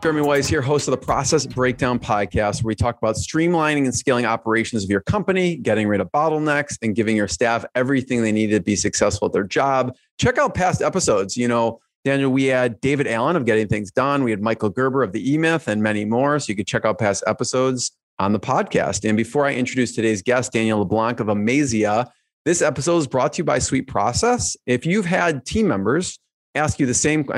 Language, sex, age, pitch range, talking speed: English, male, 30-49, 110-140 Hz, 220 wpm